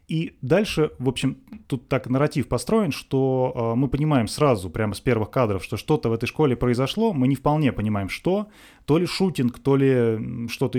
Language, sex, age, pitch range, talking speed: Russian, male, 20-39, 115-145 Hz, 190 wpm